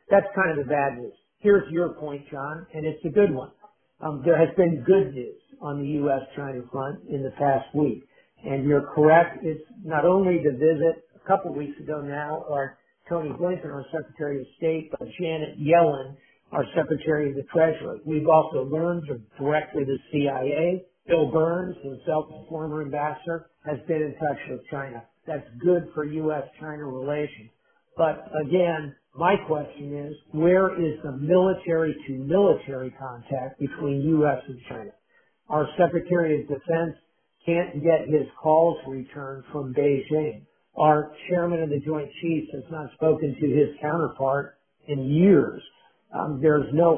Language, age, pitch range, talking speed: English, 50-69, 140-165 Hz, 155 wpm